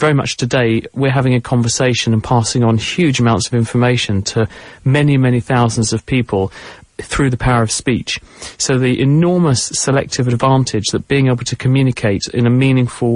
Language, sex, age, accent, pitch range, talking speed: English, male, 40-59, British, 110-130 Hz, 175 wpm